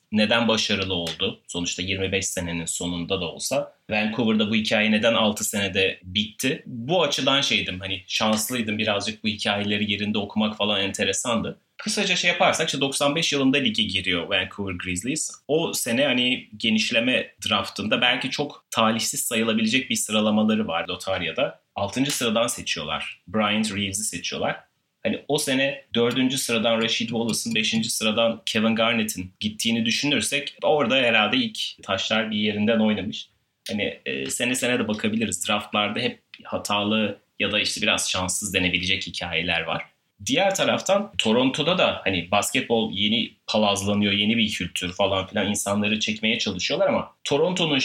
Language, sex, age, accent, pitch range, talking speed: Turkish, male, 30-49, native, 100-135 Hz, 140 wpm